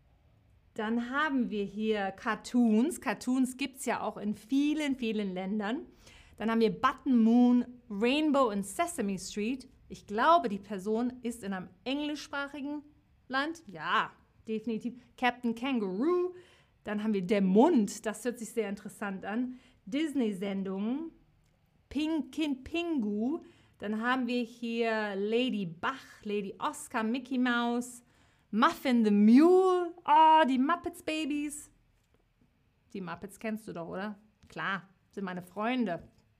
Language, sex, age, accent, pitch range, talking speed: German, female, 40-59, German, 210-280 Hz, 125 wpm